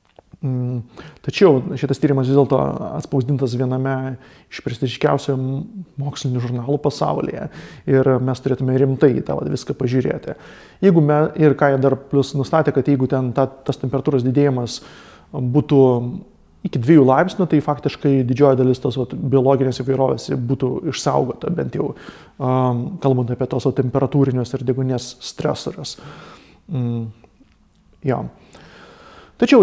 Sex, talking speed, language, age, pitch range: male, 115 wpm, English, 30-49, 130-150 Hz